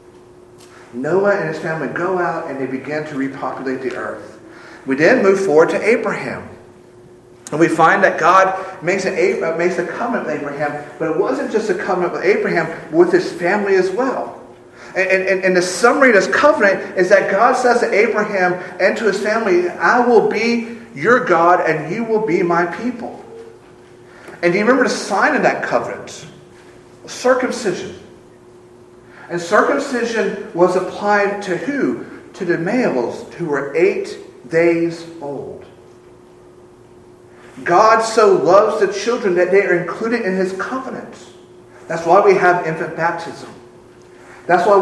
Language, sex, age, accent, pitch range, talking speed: English, male, 40-59, American, 170-215 Hz, 155 wpm